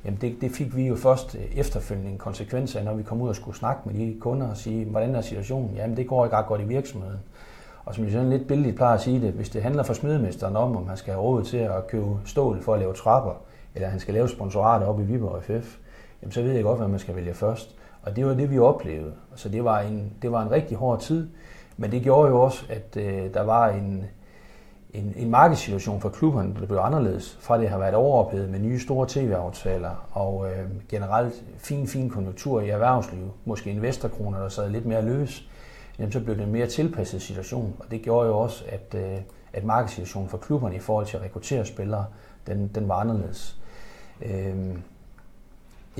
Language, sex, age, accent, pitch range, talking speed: Danish, male, 30-49, native, 100-125 Hz, 215 wpm